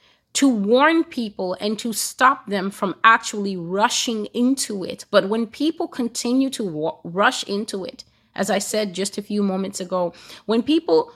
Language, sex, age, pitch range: English, female, 30-49, 180-225 Hz